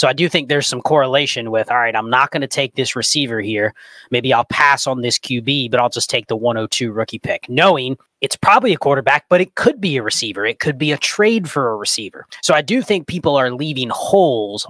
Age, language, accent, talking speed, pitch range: 30-49, English, American, 240 wpm, 120-155 Hz